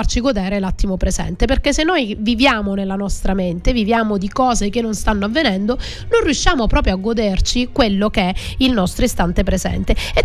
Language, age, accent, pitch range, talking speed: Italian, 30-49, native, 205-255 Hz, 180 wpm